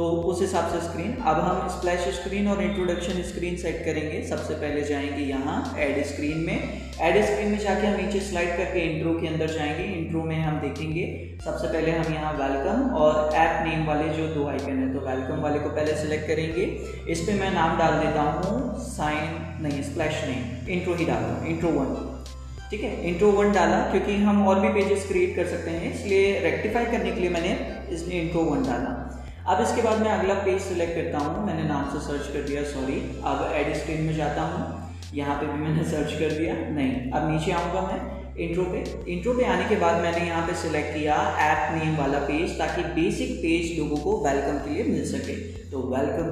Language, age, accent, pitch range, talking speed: Hindi, 30-49, native, 145-180 Hz, 205 wpm